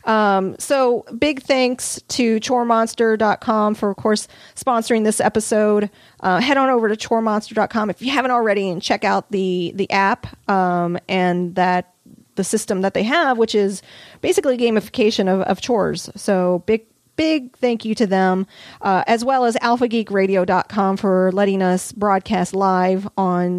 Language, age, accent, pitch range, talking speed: English, 40-59, American, 190-240 Hz, 155 wpm